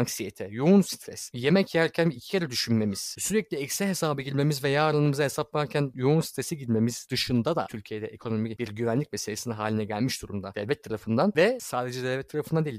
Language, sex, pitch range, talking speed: Turkish, male, 120-185 Hz, 165 wpm